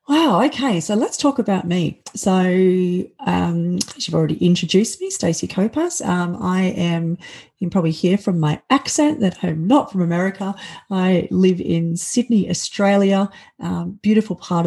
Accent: Australian